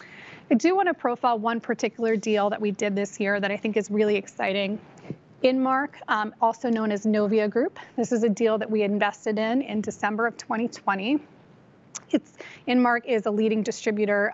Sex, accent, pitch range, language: female, American, 205-235 Hz, English